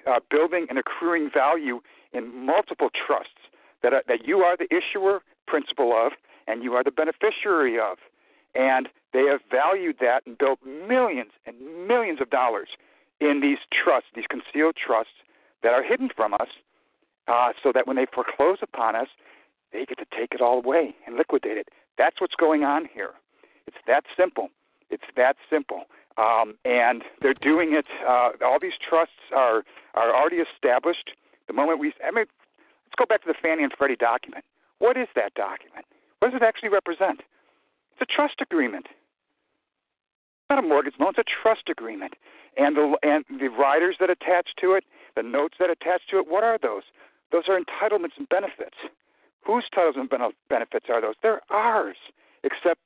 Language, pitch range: English, 145-225 Hz